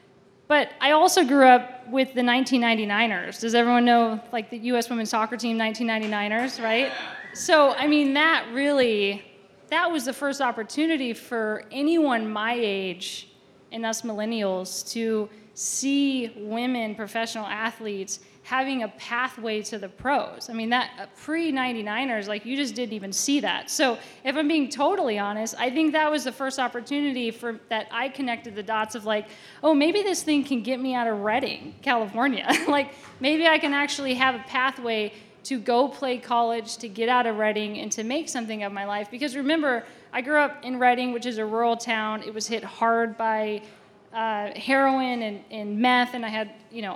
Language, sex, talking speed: English, female, 180 wpm